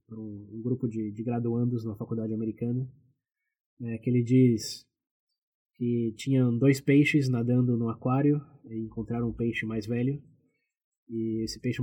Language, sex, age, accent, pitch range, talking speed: Portuguese, male, 20-39, Brazilian, 115-130 Hz, 145 wpm